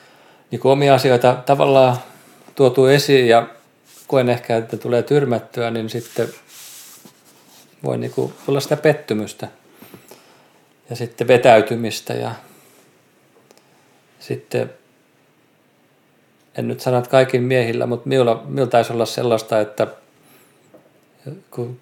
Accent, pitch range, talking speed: native, 115-130 Hz, 105 wpm